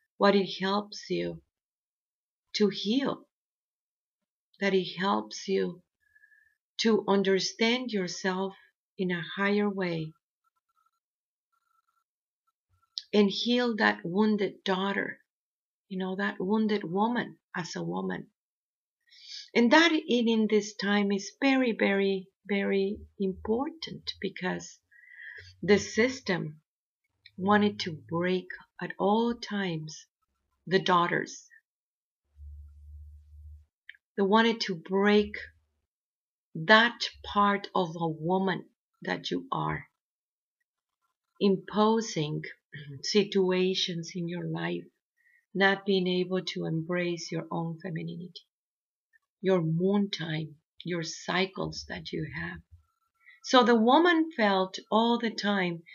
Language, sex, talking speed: English, female, 100 wpm